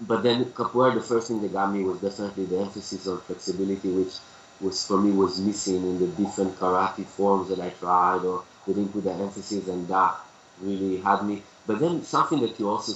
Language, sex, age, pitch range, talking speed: English, male, 20-39, 95-115 Hz, 210 wpm